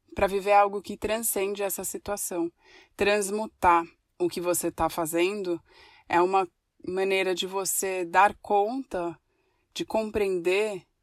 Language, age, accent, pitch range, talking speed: Portuguese, 20-39, Brazilian, 170-215 Hz, 120 wpm